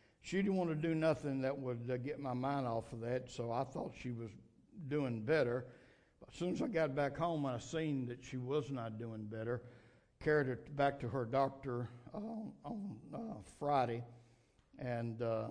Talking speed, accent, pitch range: 195 wpm, American, 115-140 Hz